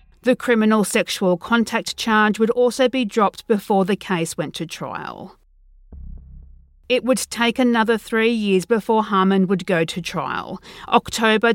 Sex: female